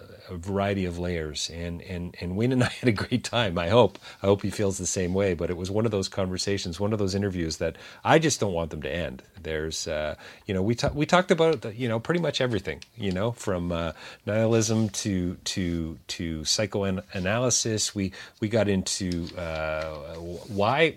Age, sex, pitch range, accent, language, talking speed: 40-59, male, 85-105 Hz, American, English, 205 wpm